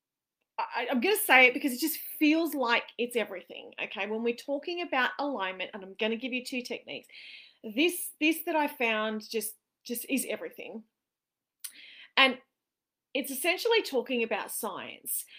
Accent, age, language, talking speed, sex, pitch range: Australian, 30-49, English, 160 wpm, female, 240-340 Hz